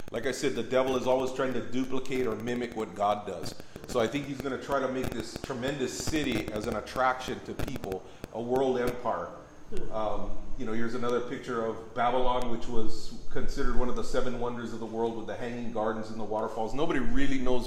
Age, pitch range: 30-49, 105-125 Hz